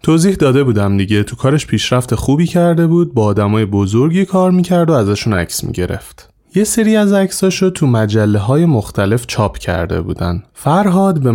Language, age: Persian, 30-49